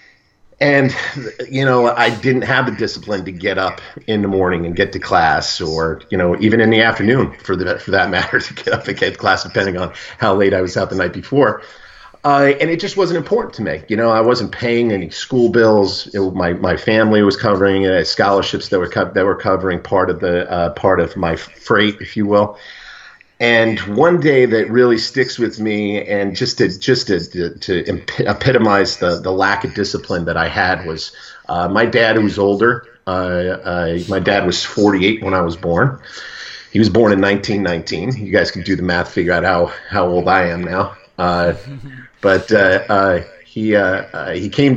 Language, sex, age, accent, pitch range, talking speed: English, male, 50-69, American, 90-115 Hz, 210 wpm